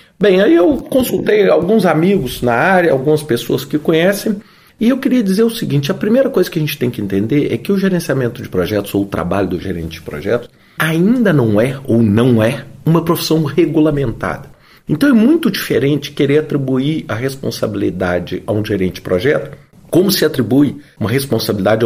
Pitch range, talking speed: 120-190 Hz, 185 wpm